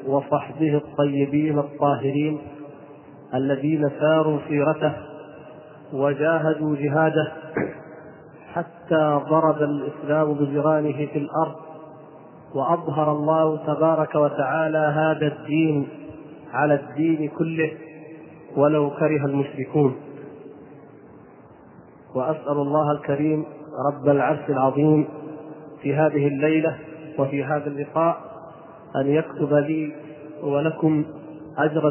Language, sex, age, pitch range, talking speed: Arabic, male, 40-59, 150-160 Hz, 80 wpm